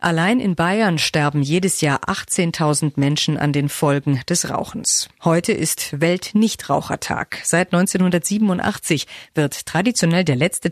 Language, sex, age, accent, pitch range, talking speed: German, female, 50-69, German, 150-200 Hz, 125 wpm